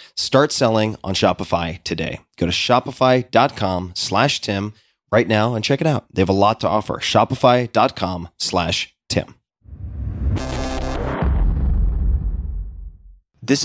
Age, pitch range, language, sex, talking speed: 20-39, 95-115 Hz, English, male, 115 wpm